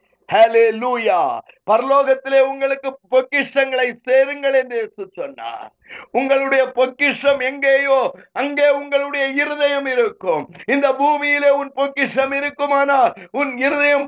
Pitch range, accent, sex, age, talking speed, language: 245-275 Hz, native, male, 50-69, 55 wpm, Tamil